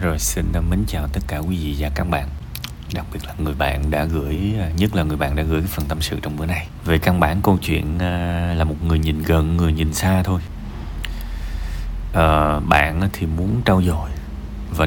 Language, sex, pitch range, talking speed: Vietnamese, male, 75-100 Hz, 205 wpm